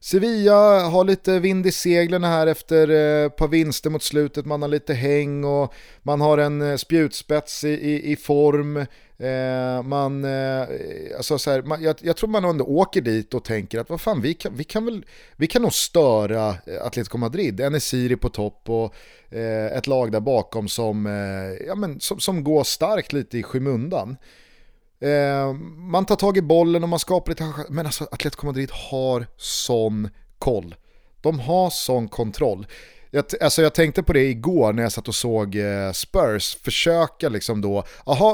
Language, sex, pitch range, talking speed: Swedish, male, 115-160 Hz, 175 wpm